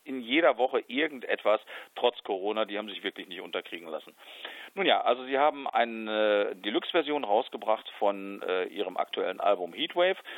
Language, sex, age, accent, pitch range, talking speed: German, male, 50-69, German, 105-130 Hz, 150 wpm